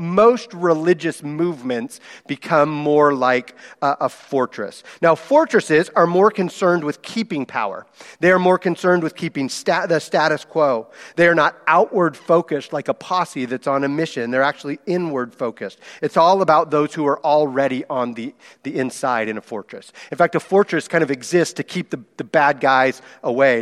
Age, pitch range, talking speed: 40-59, 140-180 Hz, 180 wpm